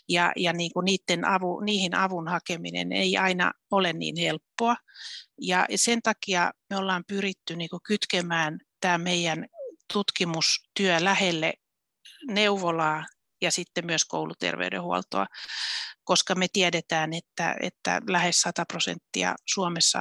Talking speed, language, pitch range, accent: 115 wpm, Finnish, 165-195 Hz, native